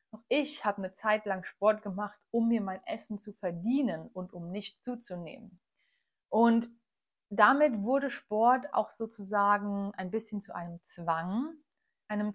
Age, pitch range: 30-49, 200-260 Hz